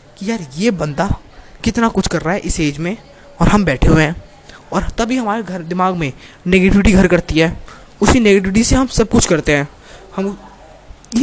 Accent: native